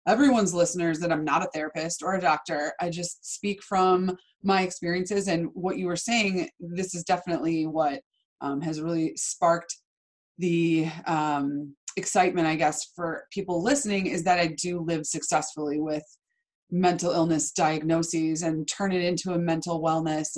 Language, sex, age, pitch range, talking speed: English, female, 20-39, 165-195 Hz, 160 wpm